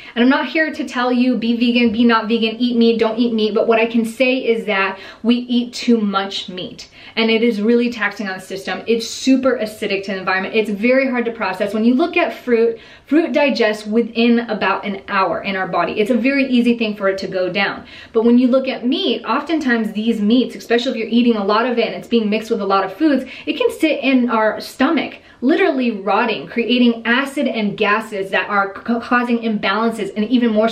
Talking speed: 230 wpm